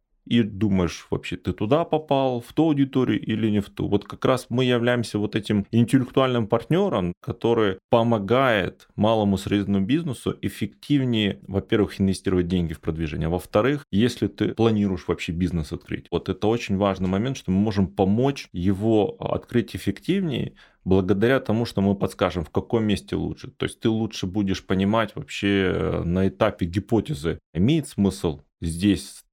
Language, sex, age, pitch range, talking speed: Ukrainian, male, 20-39, 95-120 Hz, 155 wpm